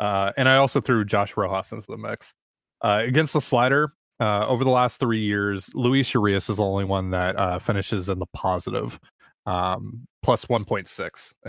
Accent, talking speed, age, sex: American, 185 wpm, 20-39, male